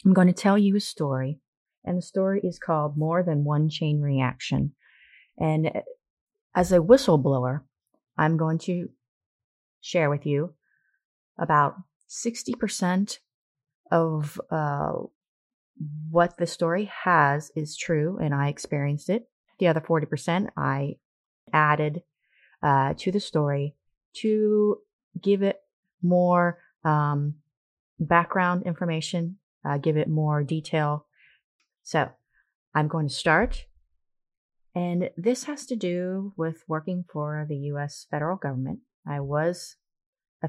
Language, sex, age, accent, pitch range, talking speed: English, female, 30-49, American, 145-180 Hz, 120 wpm